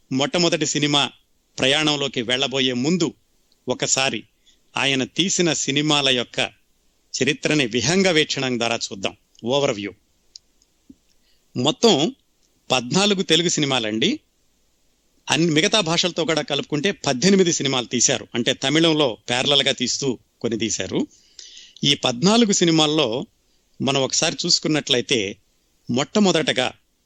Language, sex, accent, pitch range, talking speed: Telugu, male, native, 125-170 Hz, 95 wpm